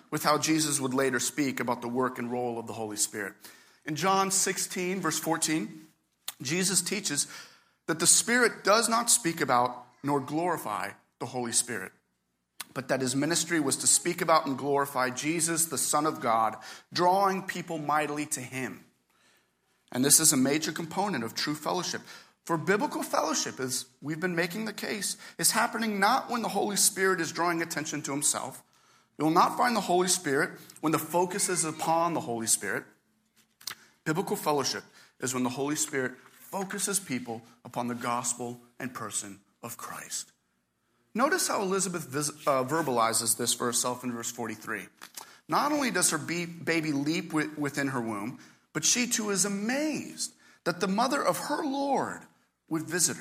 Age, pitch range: 40-59, 125-185 Hz